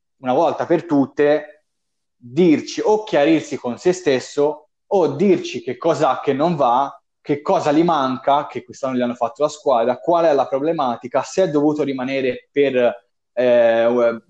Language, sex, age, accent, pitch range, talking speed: Italian, male, 20-39, native, 125-160 Hz, 165 wpm